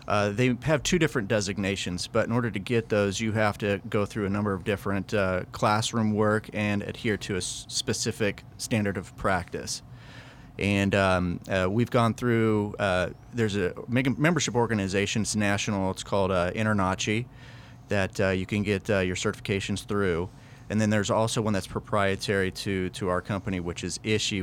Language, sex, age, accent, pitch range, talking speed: English, male, 30-49, American, 100-120 Hz, 180 wpm